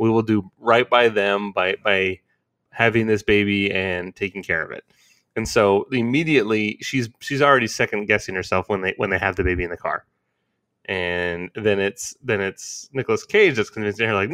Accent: American